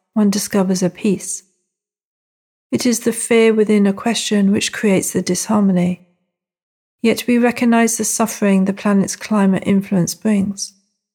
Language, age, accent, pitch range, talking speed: English, 40-59, British, 185-205 Hz, 135 wpm